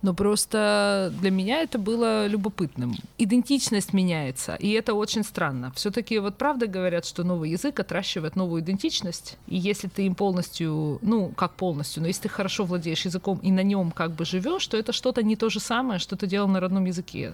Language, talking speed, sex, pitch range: Ukrainian, 195 wpm, female, 165-215 Hz